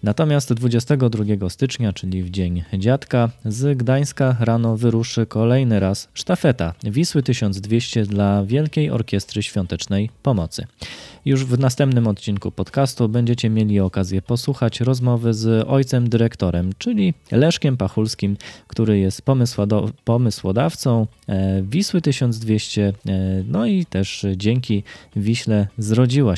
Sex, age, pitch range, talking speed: male, 20-39, 95-125 Hz, 110 wpm